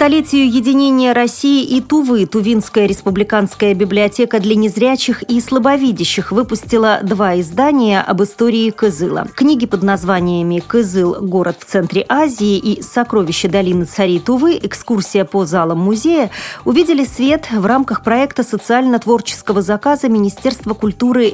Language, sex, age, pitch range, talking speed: Russian, female, 30-49, 190-240 Hz, 125 wpm